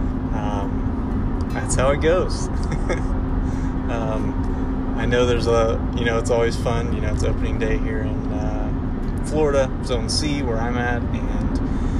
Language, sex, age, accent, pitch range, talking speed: English, male, 20-39, American, 90-120 Hz, 150 wpm